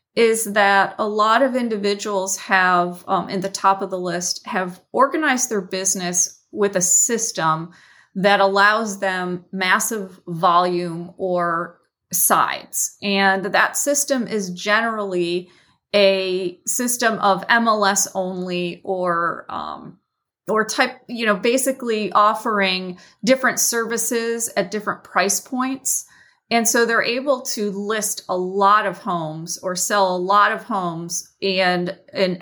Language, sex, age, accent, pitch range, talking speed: English, female, 30-49, American, 185-220 Hz, 130 wpm